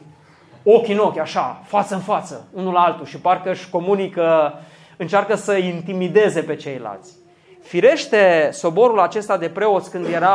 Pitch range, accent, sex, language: 160-210 Hz, native, male, Romanian